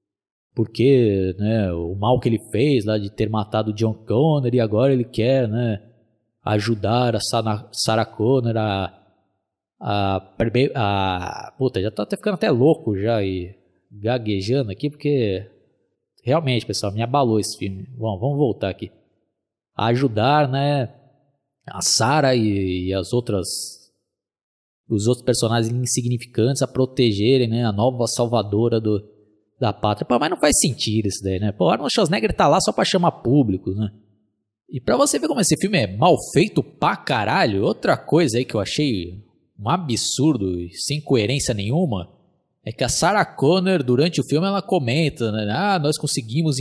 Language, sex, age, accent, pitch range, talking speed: Portuguese, male, 20-39, Brazilian, 105-140 Hz, 165 wpm